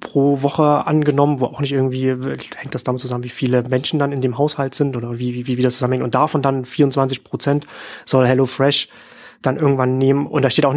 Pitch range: 130-155 Hz